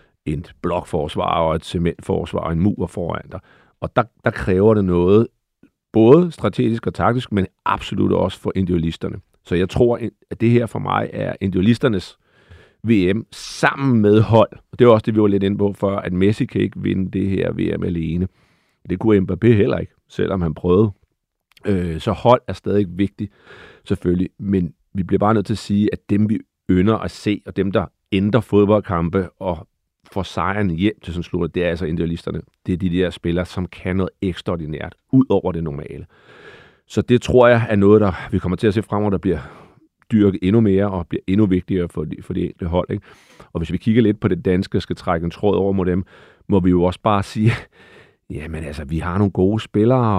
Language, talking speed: Danish, 205 wpm